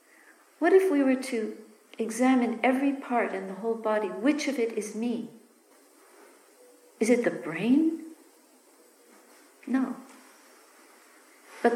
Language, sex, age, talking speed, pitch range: English, female, 60-79, 115 wpm, 220-265 Hz